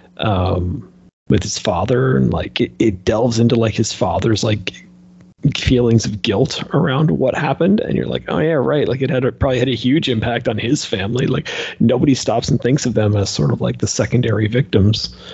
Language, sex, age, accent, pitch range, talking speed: English, male, 30-49, American, 95-125 Hz, 200 wpm